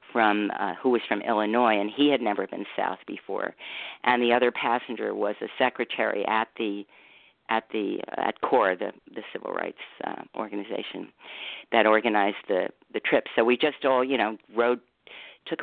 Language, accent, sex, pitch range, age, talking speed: English, American, female, 110-125 Hz, 50-69, 175 wpm